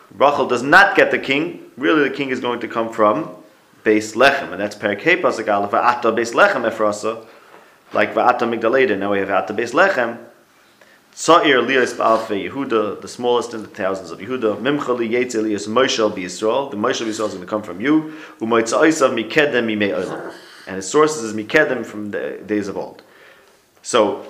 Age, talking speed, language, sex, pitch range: 30-49, 185 wpm, English, male, 100-120 Hz